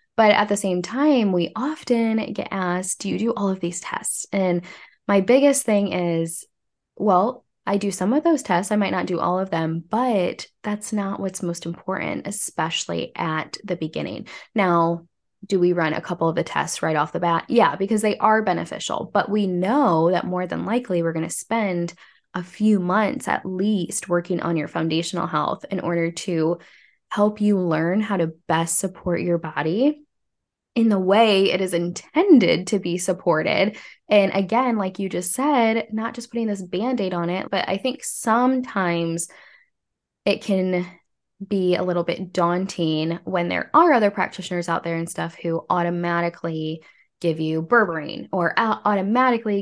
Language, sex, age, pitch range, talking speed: English, female, 10-29, 170-215 Hz, 175 wpm